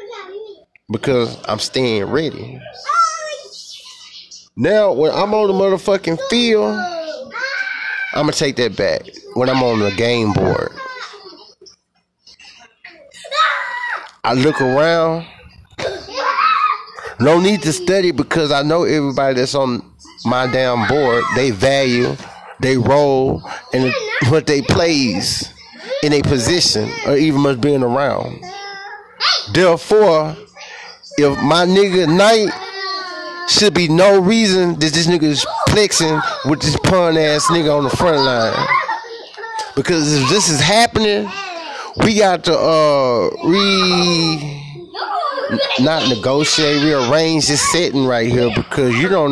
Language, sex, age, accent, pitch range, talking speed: English, male, 30-49, American, 140-210 Hz, 120 wpm